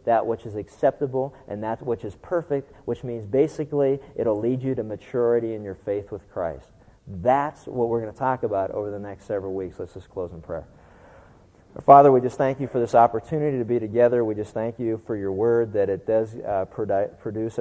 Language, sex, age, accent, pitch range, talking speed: English, male, 40-59, American, 100-120 Hz, 215 wpm